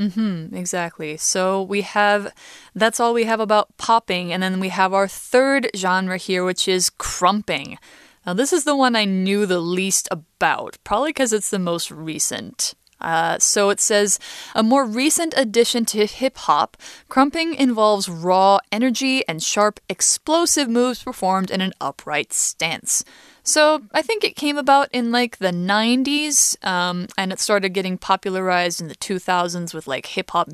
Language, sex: Chinese, female